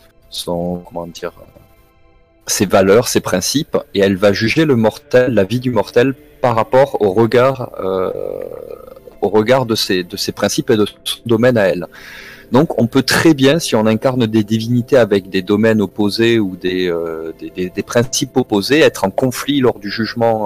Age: 30-49